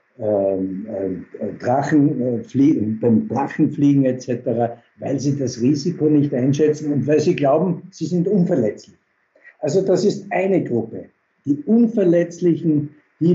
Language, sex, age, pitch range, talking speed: German, male, 60-79, 125-170 Hz, 110 wpm